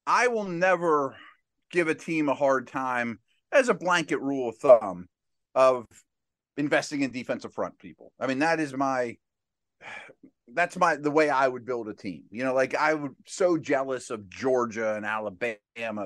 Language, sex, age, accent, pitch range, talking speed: English, male, 30-49, American, 115-160 Hz, 170 wpm